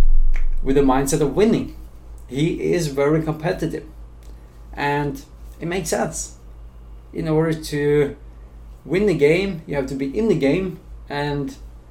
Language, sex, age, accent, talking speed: English, male, 30-49, Norwegian, 135 wpm